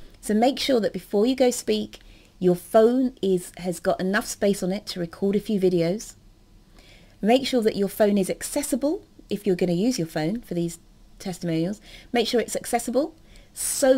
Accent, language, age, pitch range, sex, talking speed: British, English, 30-49, 170-235 Hz, female, 190 wpm